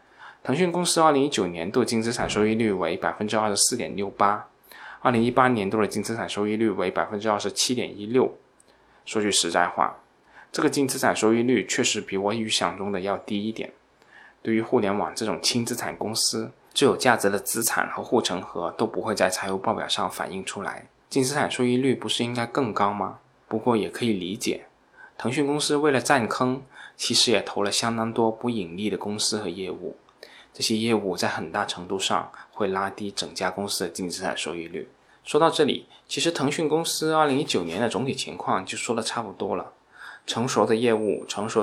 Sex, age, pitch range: male, 20-39, 105-135 Hz